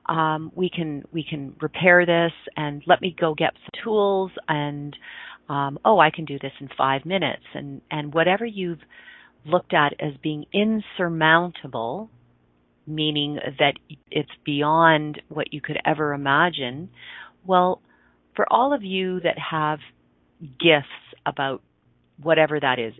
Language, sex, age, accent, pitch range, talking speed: English, female, 40-59, American, 130-160 Hz, 140 wpm